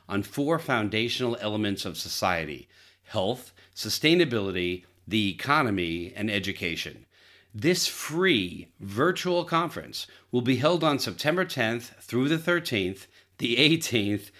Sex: male